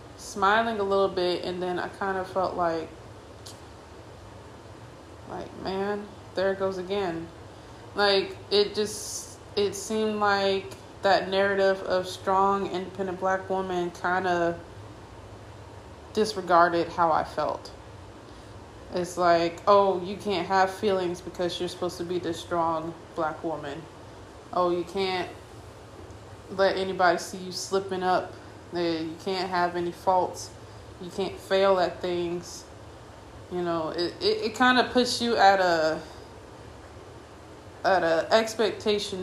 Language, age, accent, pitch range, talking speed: English, 20-39, American, 155-195 Hz, 130 wpm